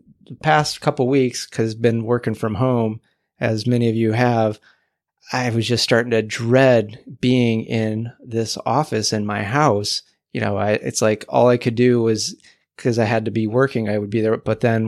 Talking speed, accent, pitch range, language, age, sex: 200 wpm, American, 110-125 Hz, English, 30-49, male